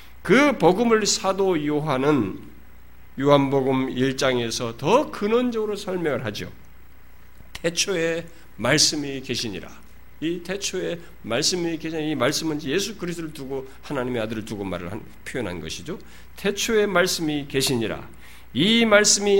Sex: male